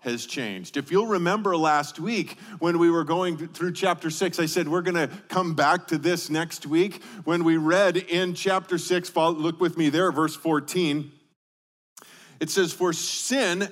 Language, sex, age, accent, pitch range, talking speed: English, male, 40-59, American, 155-195 Hz, 185 wpm